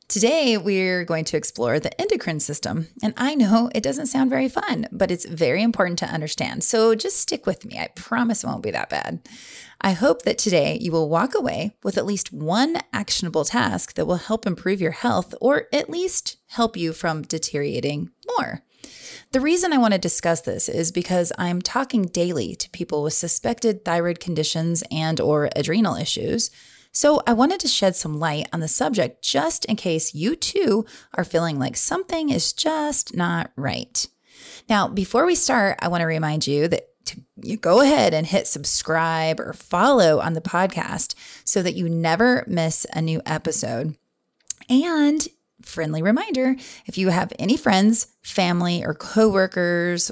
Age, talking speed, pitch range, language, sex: 30-49, 175 wpm, 165-235 Hz, English, female